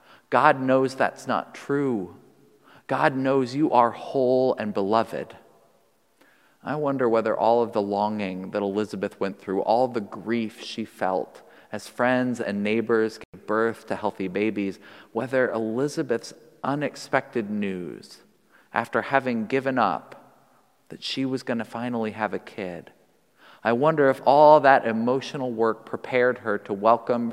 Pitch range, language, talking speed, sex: 100-125 Hz, English, 145 wpm, male